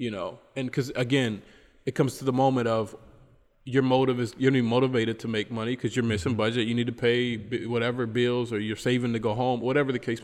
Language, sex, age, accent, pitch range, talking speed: English, male, 20-39, American, 120-140 Hz, 230 wpm